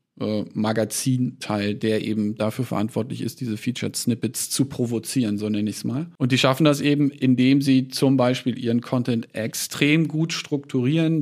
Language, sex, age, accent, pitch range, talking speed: German, male, 50-69, German, 120-145 Hz, 165 wpm